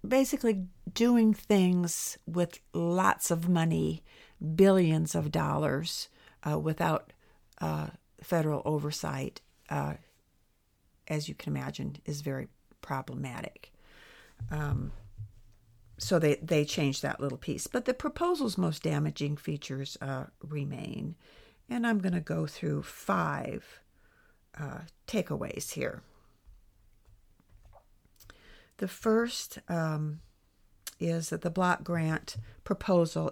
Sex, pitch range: female, 115-175 Hz